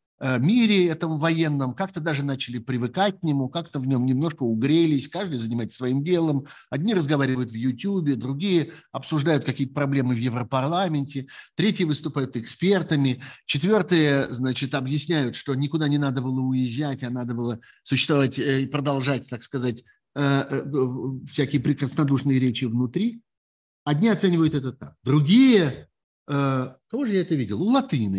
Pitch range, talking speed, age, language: 125-180 Hz, 135 wpm, 50-69, Russian